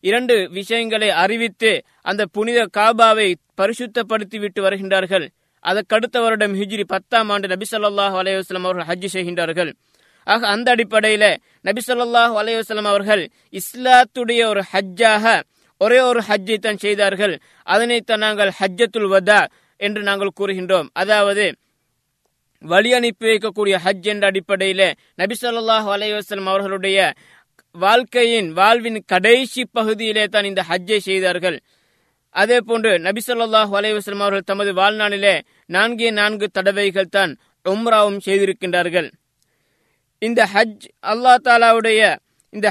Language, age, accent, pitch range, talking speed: Tamil, 20-39, native, 195-225 Hz, 85 wpm